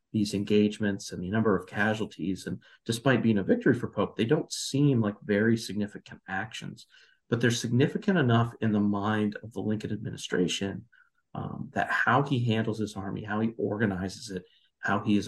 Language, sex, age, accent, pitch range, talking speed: English, male, 40-59, American, 100-115 Hz, 180 wpm